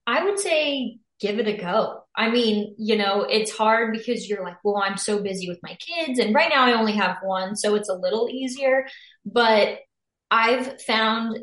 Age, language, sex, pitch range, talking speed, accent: 20-39, English, female, 190-235 Hz, 200 wpm, American